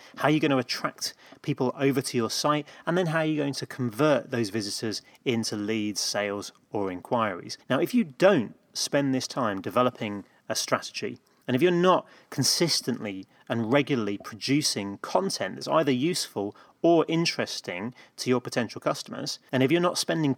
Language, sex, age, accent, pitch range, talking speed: English, male, 30-49, British, 110-145 Hz, 175 wpm